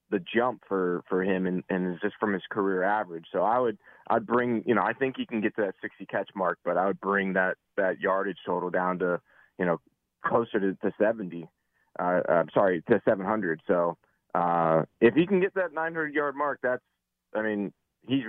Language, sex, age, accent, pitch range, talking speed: English, male, 30-49, American, 95-120 Hz, 210 wpm